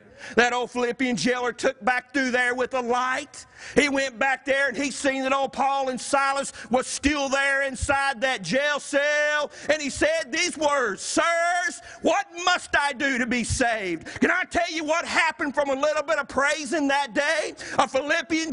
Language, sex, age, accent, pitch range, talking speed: English, male, 50-69, American, 215-315 Hz, 190 wpm